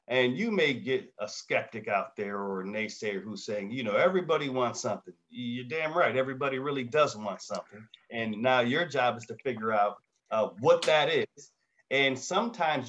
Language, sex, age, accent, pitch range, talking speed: English, male, 40-59, American, 110-145 Hz, 185 wpm